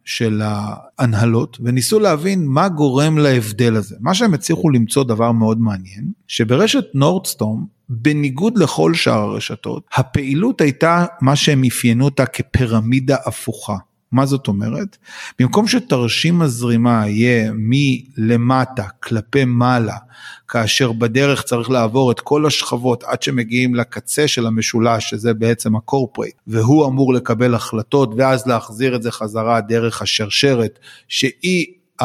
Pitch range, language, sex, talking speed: 115-150 Hz, Hebrew, male, 125 wpm